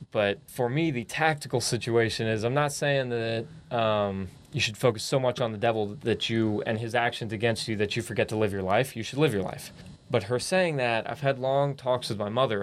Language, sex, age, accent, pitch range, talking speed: English, male, 20-39, American, 105-135 Hz, 240 wpm